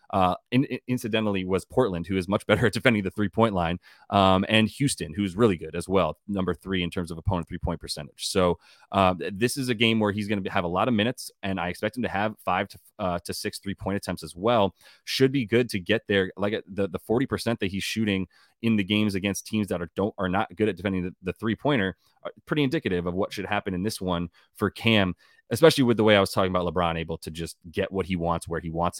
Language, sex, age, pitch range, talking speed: English, male, 30-49, 90-105 Hz, 250 wpm